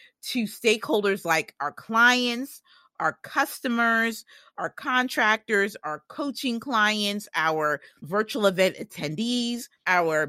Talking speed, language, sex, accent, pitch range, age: 100 wpm, English, female, American, 180-255 Hz, 30-49